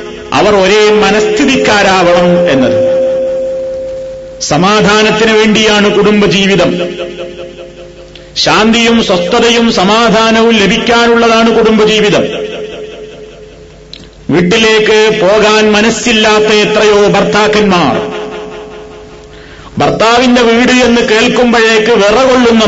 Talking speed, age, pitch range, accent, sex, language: 60 wpm, 40-59, 205-225 Hz, native, male, Malayalam